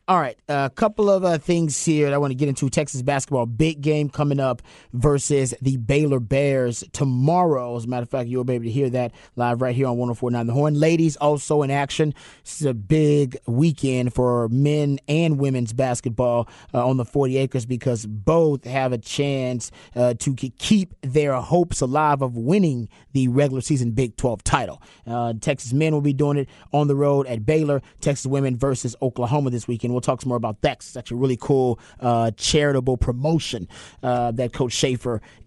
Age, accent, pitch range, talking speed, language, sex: 30-49, American, 125-145 Hz, 195 wpm, English, male